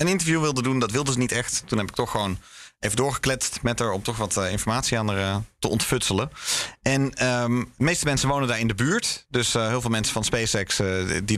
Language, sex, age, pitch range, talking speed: Dutch, male, 30-49, 110-140 Hz, 235 wpm